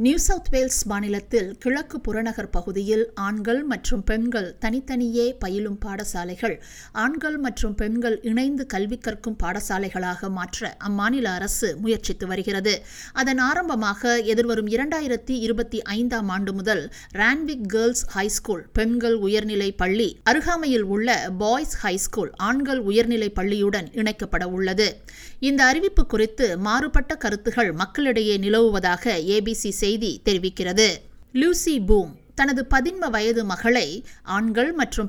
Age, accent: 50-69, native